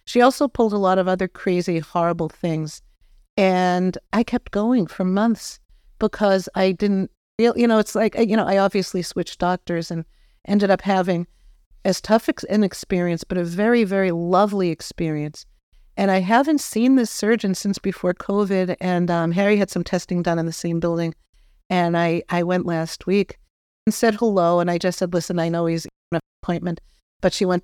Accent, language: American, English